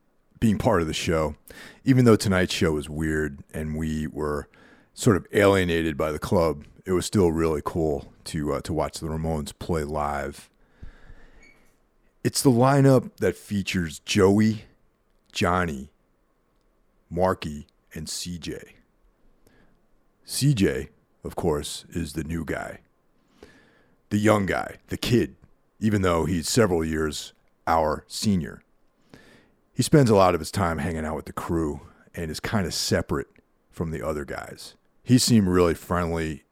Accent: American